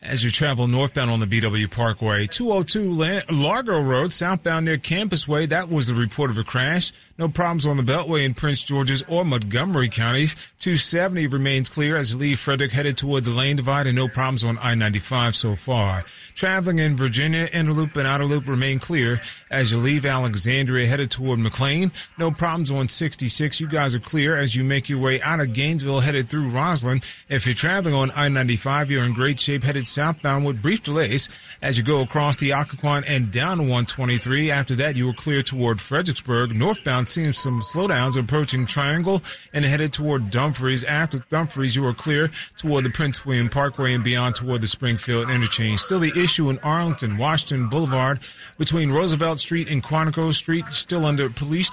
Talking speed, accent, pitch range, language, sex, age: 185 wpm, American, 125-155 Hz, English, male, 30-49